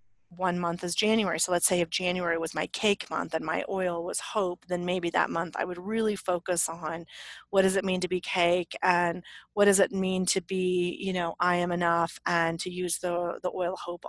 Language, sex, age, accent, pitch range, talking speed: English, female, 30-49, American, 175-205 Hz, 225 wpm